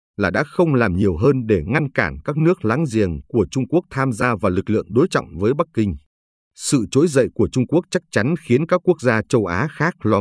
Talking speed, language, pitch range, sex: 245 wpm, Vietnamese, 95-140 Hz, male